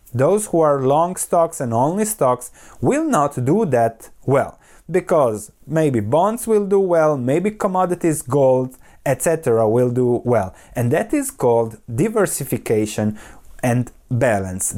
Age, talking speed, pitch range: 30-49, 135 wpm, 125-185 Hz